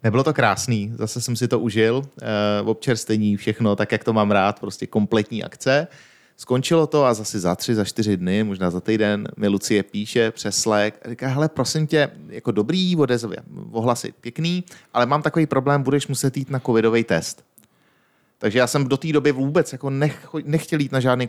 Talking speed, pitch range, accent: 195 wpm, 105-135 Hz, native